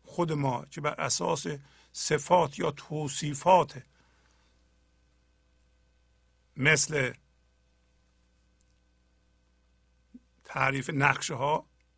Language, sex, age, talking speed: Persian, male, 50-69, 55 wpm